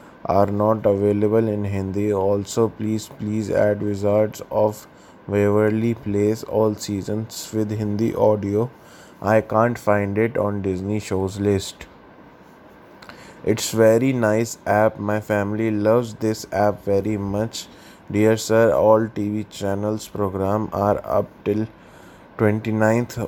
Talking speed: 120 wpm